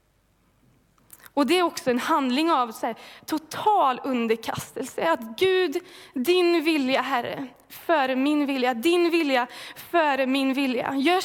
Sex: female